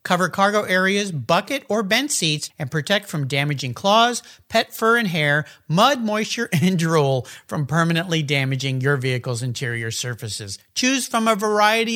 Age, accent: 50-69, American